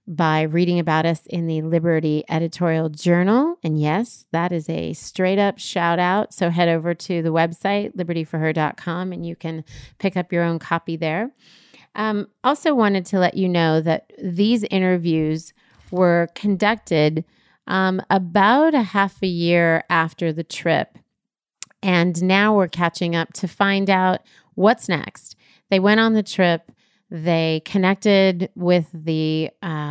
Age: 30-49